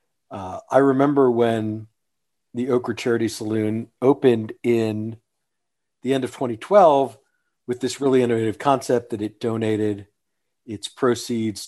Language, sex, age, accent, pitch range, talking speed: English, male, 40-59, American, 110-130 Hz, 125 wpm